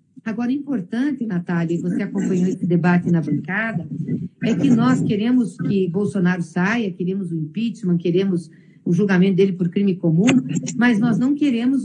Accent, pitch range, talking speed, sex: Brazilian, 185-250 Hz, 160 wpm, female